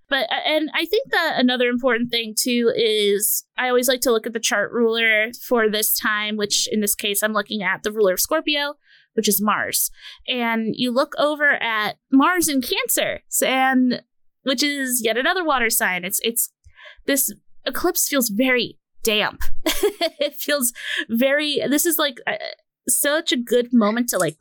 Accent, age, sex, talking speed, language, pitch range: American, 20-39, female, 175 wpm, English, 215-275 Hz